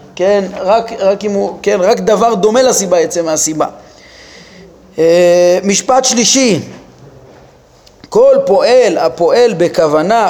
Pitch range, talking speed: 185-245 Hz, 105 wpm